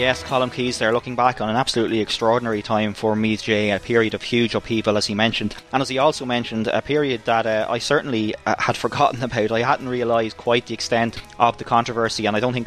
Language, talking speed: English, 235 wpm